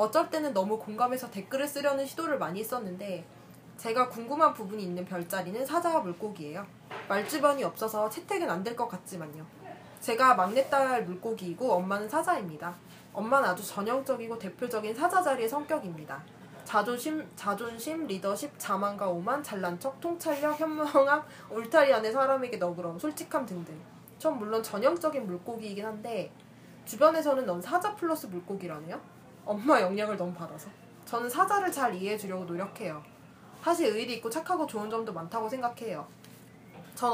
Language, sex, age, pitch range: Korean, female, 20-39, 185-275 Hz